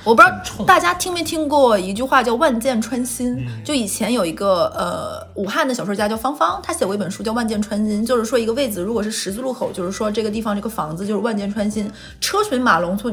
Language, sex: Chinese, female